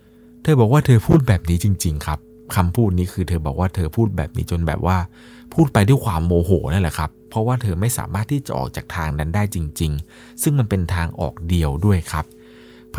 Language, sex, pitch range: Thai, male, 75-110 Hz